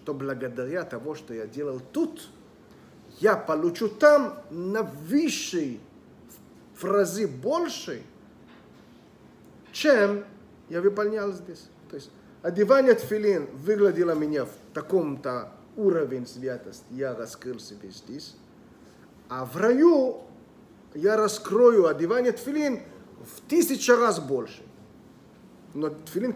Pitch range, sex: 155-225 Hz, male